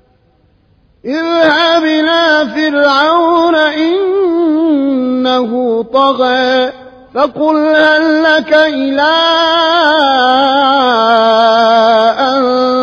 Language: Arabic